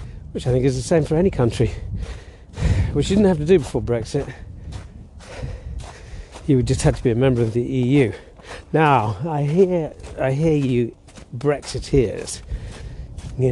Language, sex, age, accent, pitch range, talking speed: English, male, 40-59, British, 115-160 Hz, 160 wpm